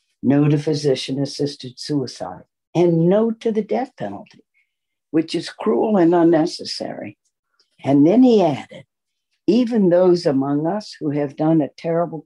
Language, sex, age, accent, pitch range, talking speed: English, female, 60-79, American, 130-170 Hz, 135 wpm